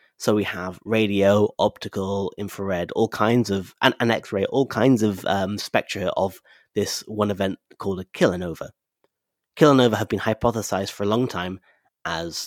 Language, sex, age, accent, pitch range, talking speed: English, male, 30-49, British, 100-115 Hz, 160 wpm